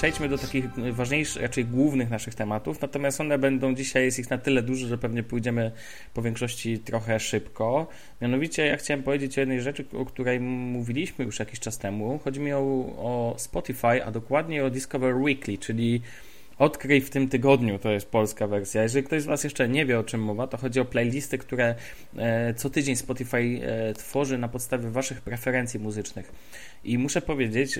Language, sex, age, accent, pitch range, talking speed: Polish, male, 20-39, native, 115-140 Hz, 180 wpm